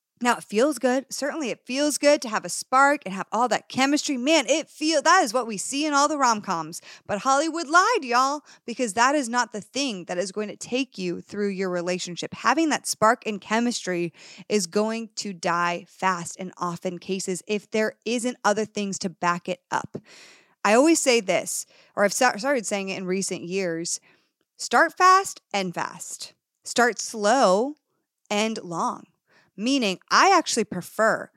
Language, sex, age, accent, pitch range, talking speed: English, female, 30-49, American, 185-250 Hz, 180 wpm